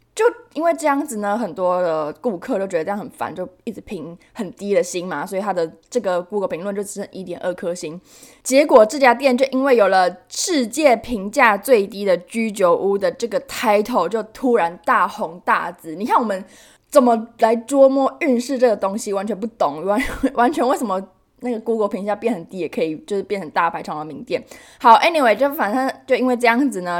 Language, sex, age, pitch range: Chinese, female, 20-39, 195-265 Hz